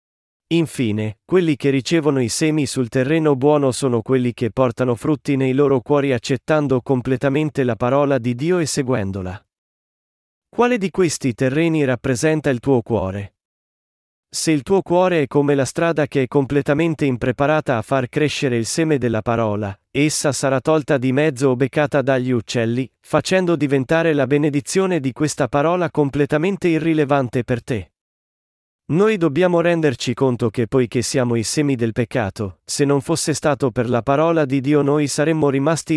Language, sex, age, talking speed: Italian, male, 40-59, 160 wpm